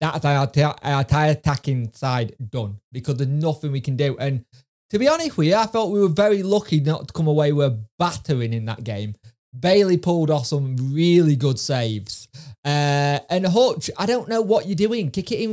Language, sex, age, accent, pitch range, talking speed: English, male, 20-39, British, 130-180 Hz, 205 wpm